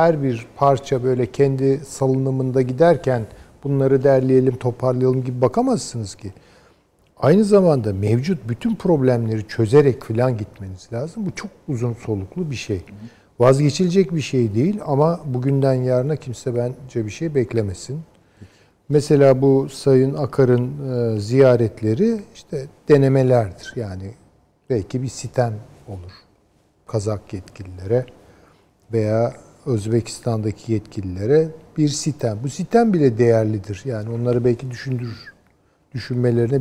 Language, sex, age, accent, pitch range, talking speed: Turkish, male, 50-69, native, 105-140 Hz, 110 wpm